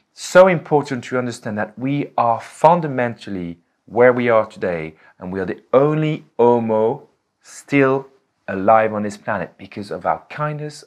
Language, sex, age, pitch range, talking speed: English, male, 30-49, 90-140 Hz, 150 wpm